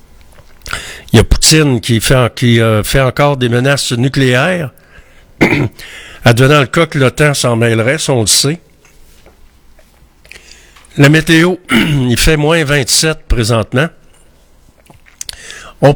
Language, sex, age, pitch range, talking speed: French, male, 60-79, 115-145 Hz, 115 wpm